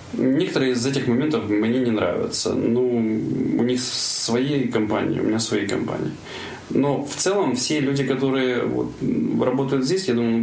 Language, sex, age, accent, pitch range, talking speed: Ukrainian, male, 20-39, native, 115-130 Hz, 155 wpm